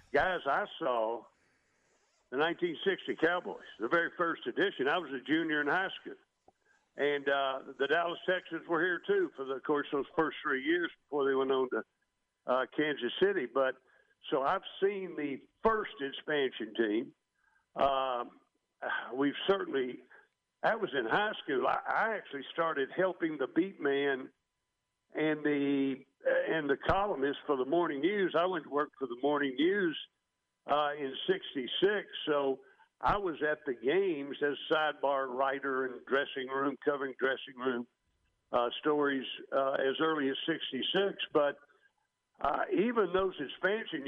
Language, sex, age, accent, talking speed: English, male, 60-79, American, 150 wpm